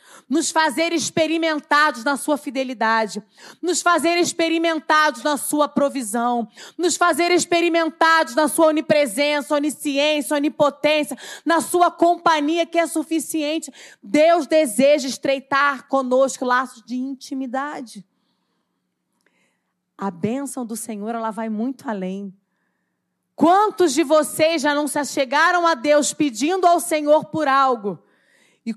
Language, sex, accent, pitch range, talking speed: Portuguese, female, Brazilian, 240-315 Hz, 115 wpm